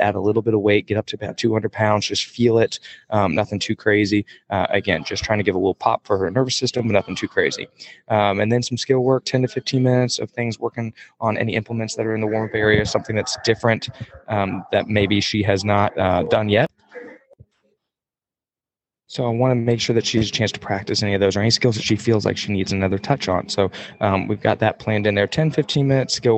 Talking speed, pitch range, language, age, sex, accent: 250 wpm, 100-125 Hz, English, 20-39, male, American